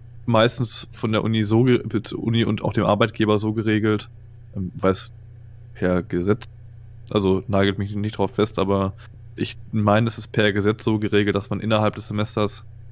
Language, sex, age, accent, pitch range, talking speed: German, male, 20-39, German, 100-110 Hz, 180 wpm